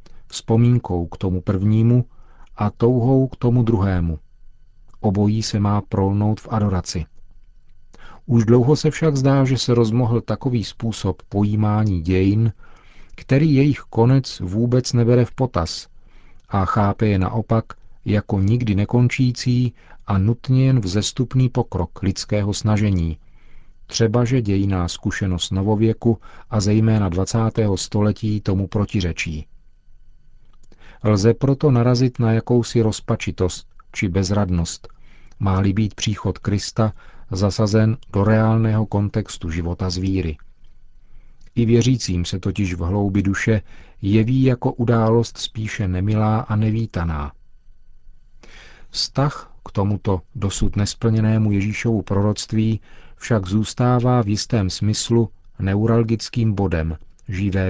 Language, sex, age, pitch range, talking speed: Czech, male, 40-59, 95-115 Hz, 110 wpm